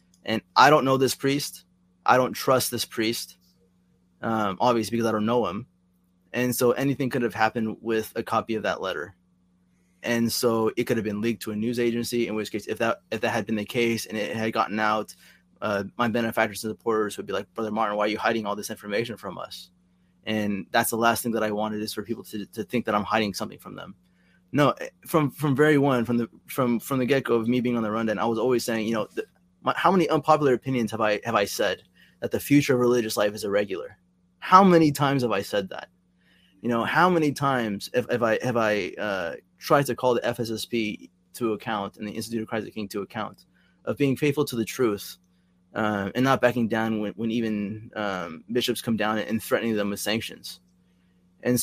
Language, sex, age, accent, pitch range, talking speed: English, male, 20-39, American, 100-120 Hz, 225 wpm